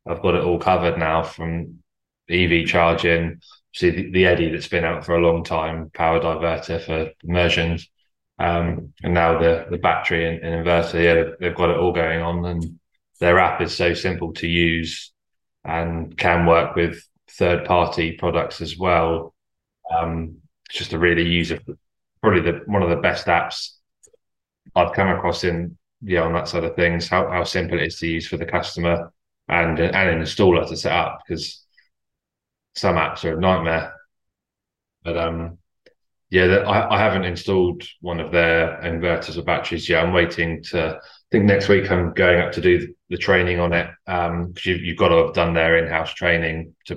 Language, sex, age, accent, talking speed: English, male, 20-39, British, 185 wpm